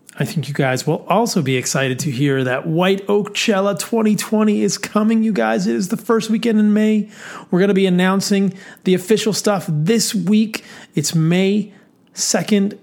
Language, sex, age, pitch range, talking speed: English, male, 30-49, 150-200 Hz, 180 wpm